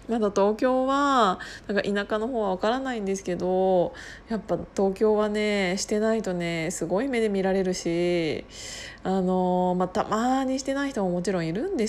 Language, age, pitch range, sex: Japanese, 20-39, 175-210 Hz, female